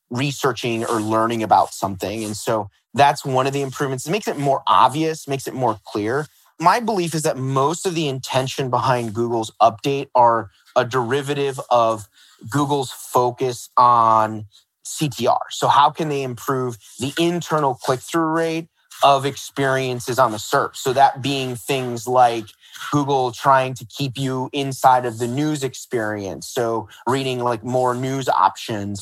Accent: American